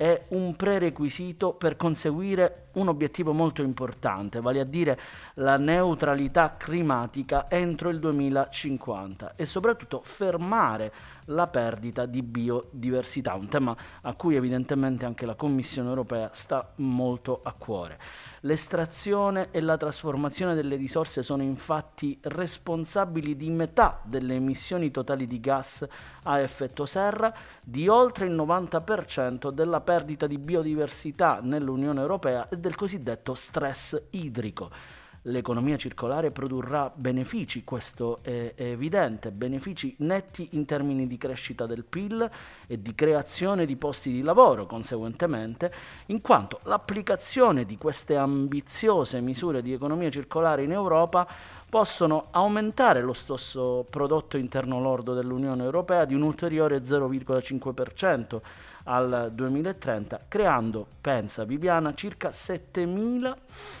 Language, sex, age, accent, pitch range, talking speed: Italian, male, 30-49, native, 125-170 Hz, 120 wpm